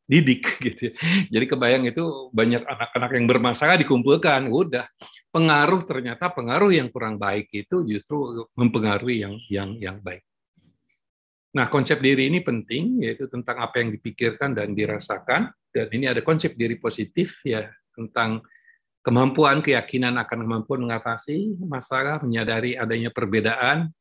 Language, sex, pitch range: Indonesian, male, 115-145 Hz